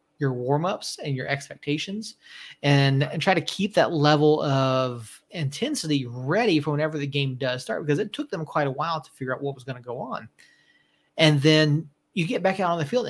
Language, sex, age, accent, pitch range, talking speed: English, male, 30-49, American, 135-160 Hz, 210 wpm